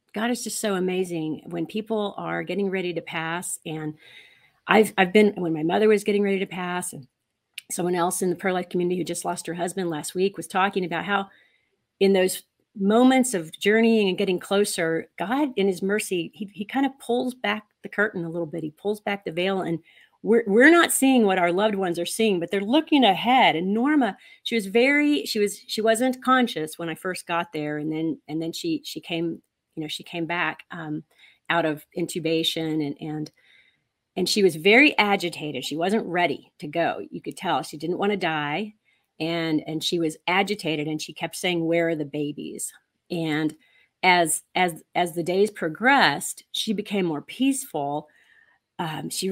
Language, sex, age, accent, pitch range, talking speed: English, female, 40-59, American, 165-210 Hz, 195 wpm